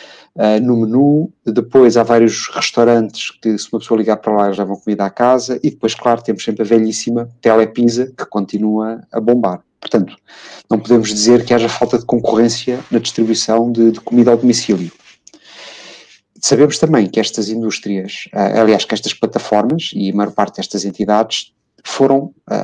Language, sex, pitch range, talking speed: Portuguese, male, 110-125 Hz, 170 wpm